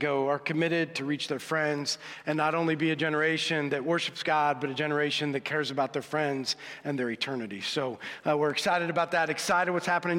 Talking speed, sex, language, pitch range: 210 wpm, male, English, 145-175 Hz